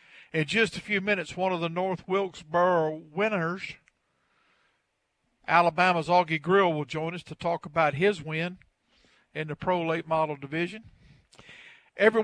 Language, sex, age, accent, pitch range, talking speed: English, male, 50-69, American, 160-195 Hz, 140 wpm